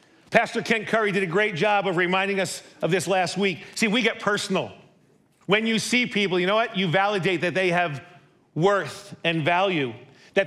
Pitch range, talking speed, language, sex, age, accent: 170-220 Hz, 195 wpm, English, male, 50-69, American